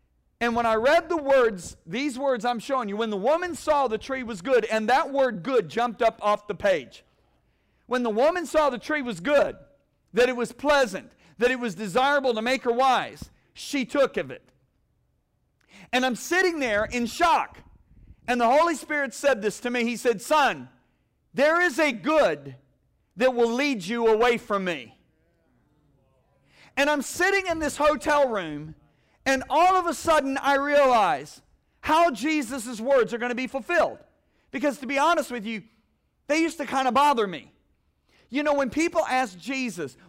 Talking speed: 180 wpm